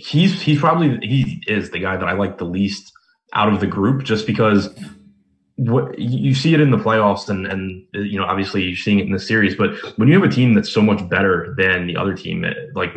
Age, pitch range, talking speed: 20-39, 90-110 Hz, 240 wpm